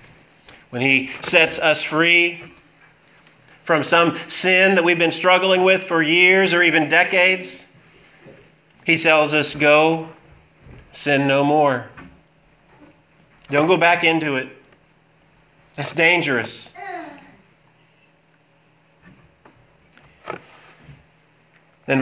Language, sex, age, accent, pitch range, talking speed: English, male, 30-49, American, 125-170 Hz, 90 wpm